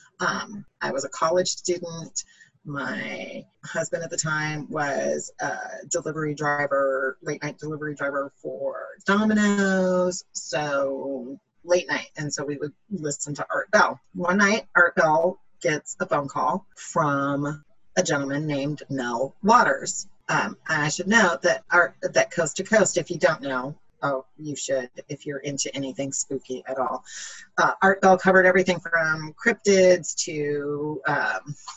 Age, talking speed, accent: 30-49, 145 wpm, American